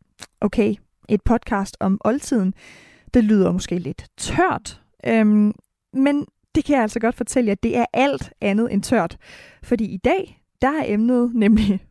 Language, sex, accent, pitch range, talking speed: Danish, female, native, 210-260 Hz, 160 wpm